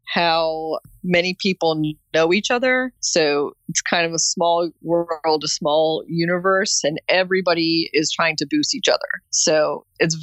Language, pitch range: English, 145-175 Hz